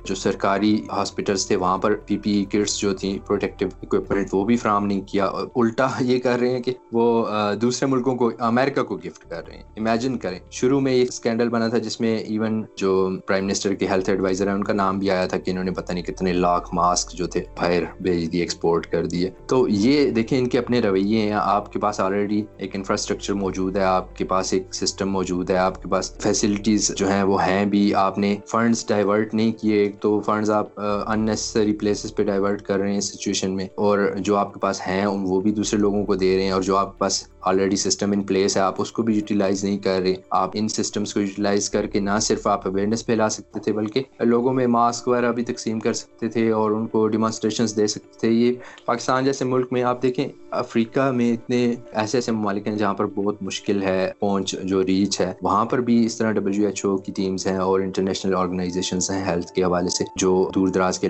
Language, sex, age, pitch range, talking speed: Urdu, male, 20-39, 95-110 Hz, 210 wpm